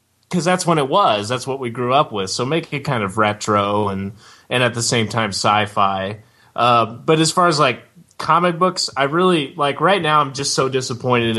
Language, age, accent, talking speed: English, 20-39, American, 215 wpm